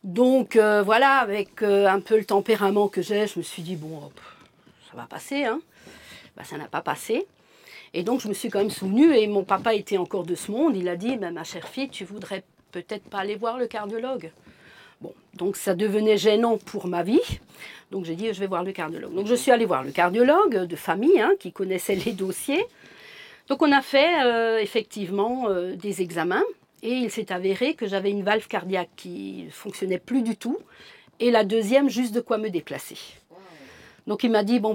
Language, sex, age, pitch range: French, female, 50-69, 190-235 Hz